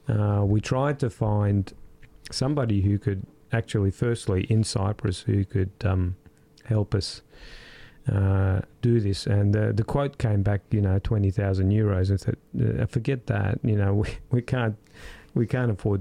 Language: Greek